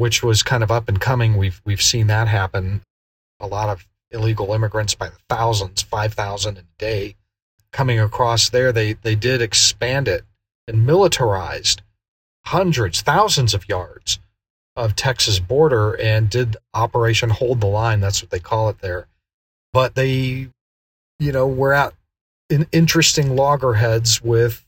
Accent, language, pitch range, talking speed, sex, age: American, English, 100-125 Hz, 150 wpm, male, 40-59